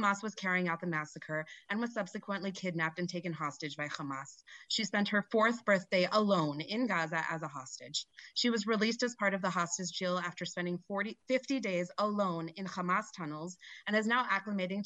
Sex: female